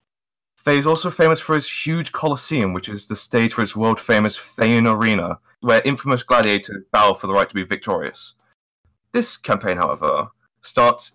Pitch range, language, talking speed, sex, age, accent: 105-155 Hz, English, 165 wpm, male, 20-39, British